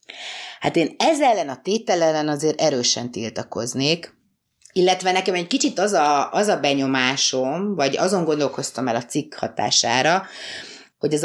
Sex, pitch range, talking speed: female, 135-180 Hz, 145 wpm